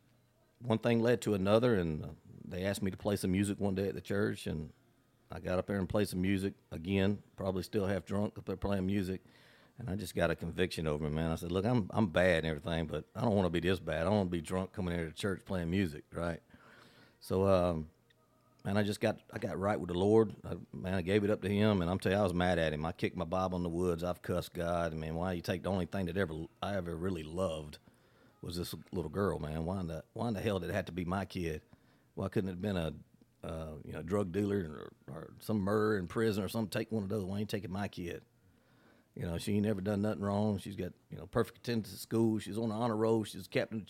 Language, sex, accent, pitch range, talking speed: English, male, American, 90-110 Hz, 275 wpm